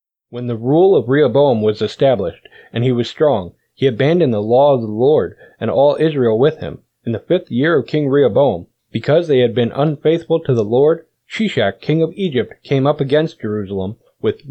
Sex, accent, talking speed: male, American, 195 wpm